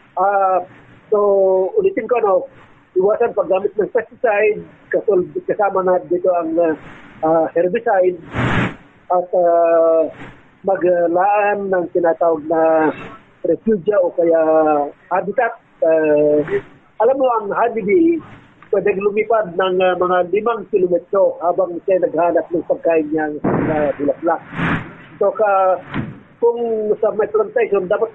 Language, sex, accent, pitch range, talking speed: Filipino, male, native, 170-210 Hz, 110 wpm